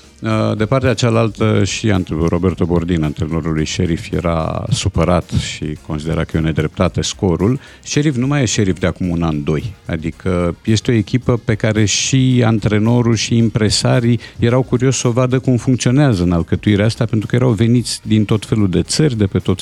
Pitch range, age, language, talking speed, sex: 90-125 Hz, 50-69, Romanian, 180 wpm, male